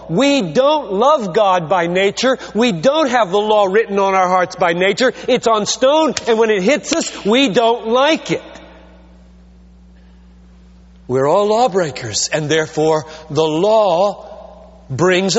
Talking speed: 145 wpm